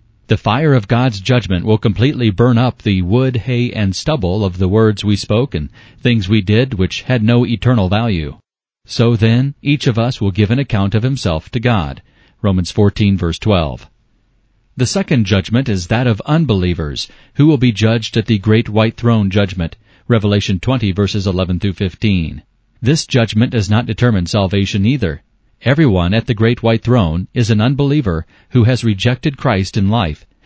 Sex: male